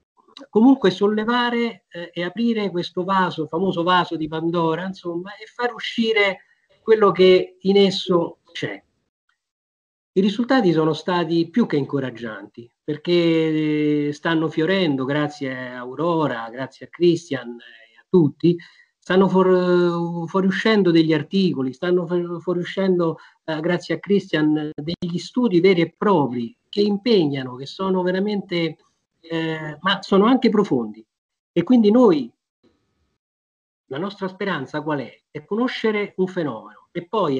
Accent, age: native, 50-69